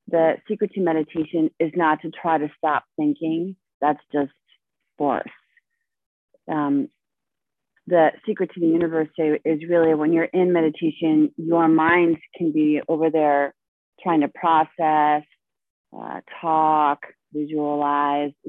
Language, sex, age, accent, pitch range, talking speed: English, female, 30-49, American, 145-170 Hz, 125 wpm